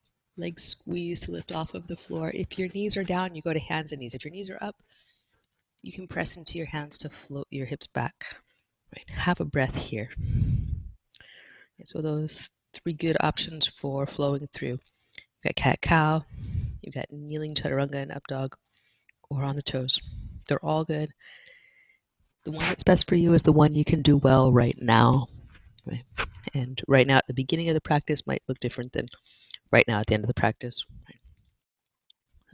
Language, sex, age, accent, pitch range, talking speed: English, female, 30-49, American, 120-155 Hz, 190 wpm